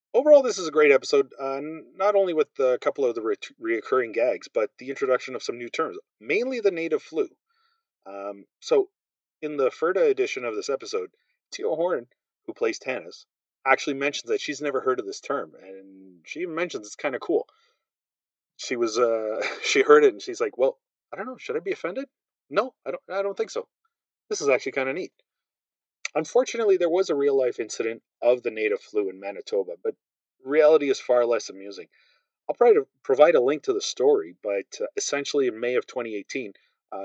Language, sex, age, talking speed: English, male, 30-49, 200 wpm